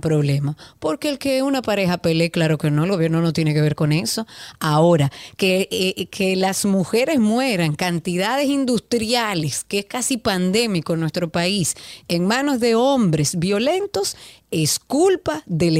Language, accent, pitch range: Spanish, American, 165-210 Hz